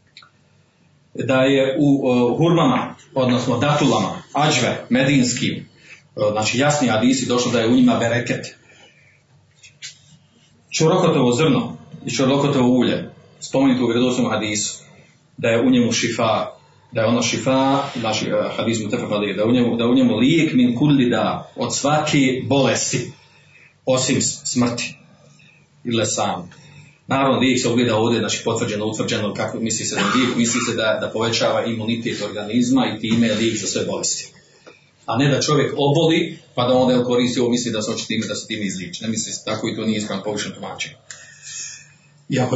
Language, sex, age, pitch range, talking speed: Croatian, male, 40-59, 115-145 Hz, 155 wpm